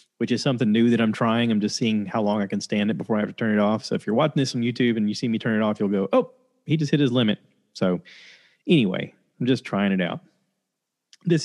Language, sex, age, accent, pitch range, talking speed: English, male, 30-49, American, 110-145 Hz, 280 wpm